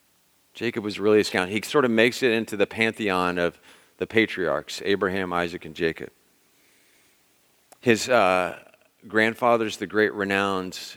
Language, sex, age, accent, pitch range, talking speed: English, male, 40-59, American, 90-110 Hz, 140 wpm